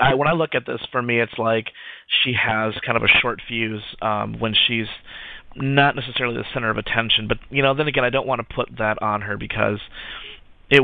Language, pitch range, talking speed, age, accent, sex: English, 110-120 Hz, 225 wpm, 30-49, American, male